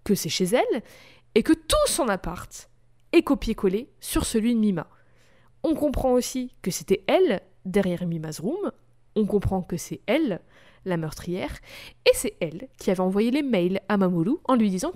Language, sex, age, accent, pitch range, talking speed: French, female, 20-39, French, 185-250 Hz, 175 wpm